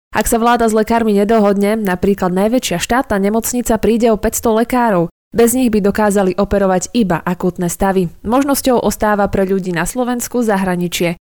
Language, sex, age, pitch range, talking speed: Slovak, female, 20-39, 185-230 Hz, 155 wpm